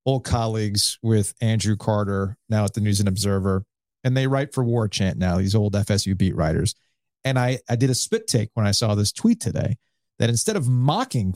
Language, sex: English, male